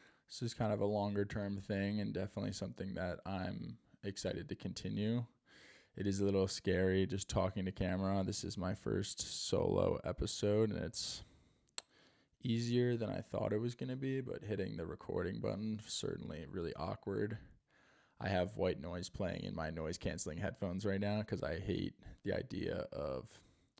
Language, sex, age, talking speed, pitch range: English, male, 20-39, 165 wpm, 90-105 Hz